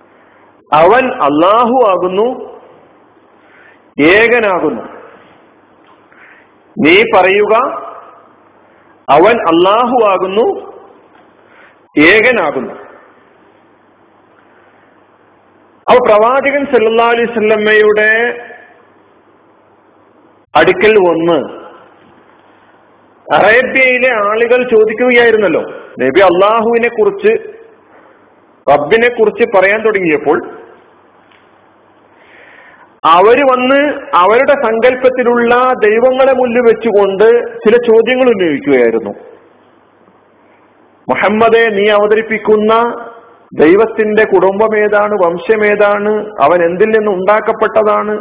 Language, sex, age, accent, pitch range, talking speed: Malayalam, male, 50-69, native, 205-250 Hz, 60 wpm